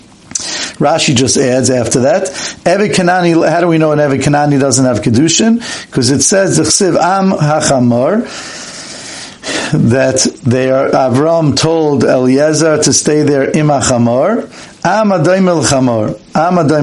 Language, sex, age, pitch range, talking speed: English, male, 50-69, 135-170 Hz, 120 wpm